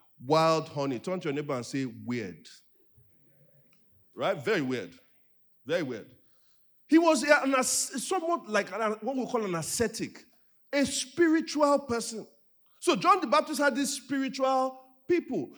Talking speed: 145 wpm